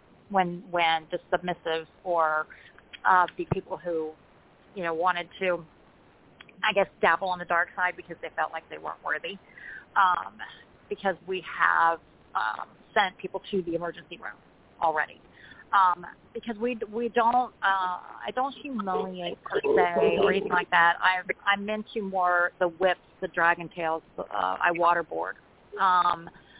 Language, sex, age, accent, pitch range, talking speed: English, female, 30-49, American, 170-200 Hz, 150 wpm